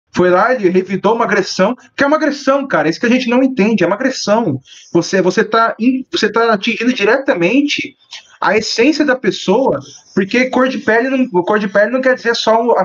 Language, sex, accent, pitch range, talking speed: Portuguese, male, Brazilian, 175-250 Hz, 205 wpm